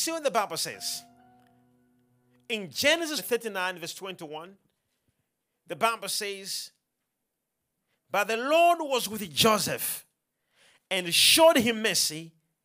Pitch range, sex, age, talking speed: 165-255 Hz, male, 40-59, 110 wpm